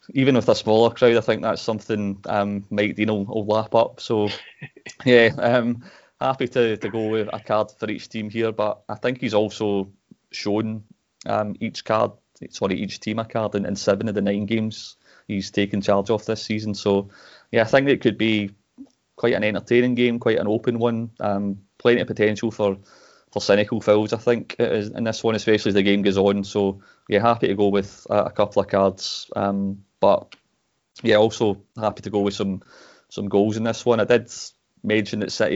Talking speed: 205 wpm